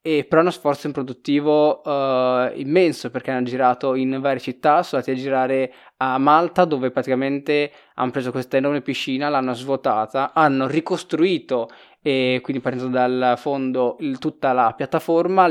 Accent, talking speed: native, 155 wpm